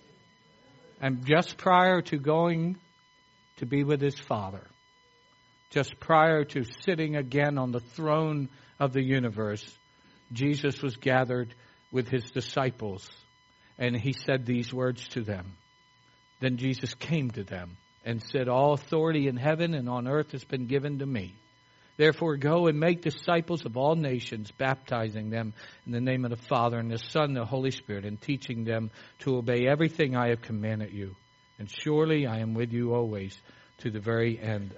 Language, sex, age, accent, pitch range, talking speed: English, male, 60-79, American, 120-145 Hz, 165 wpm